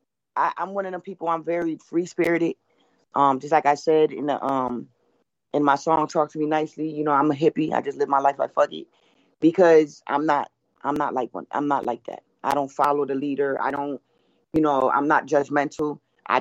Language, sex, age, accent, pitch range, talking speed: English, female, 30-49, American, 135-155 Hz, 225 wpm